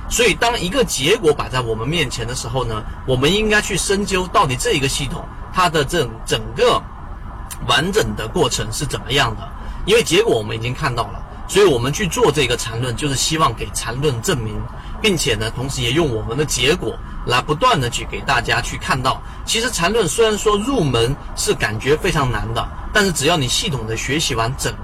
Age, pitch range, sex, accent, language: 30-49, 115-155 Hz, male, native, Chinese